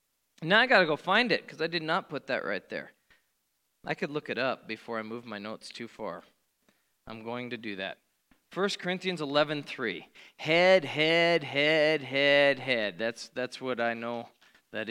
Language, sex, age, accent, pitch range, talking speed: English, male, 40-59, American, 145-195 Hz, 185 wpm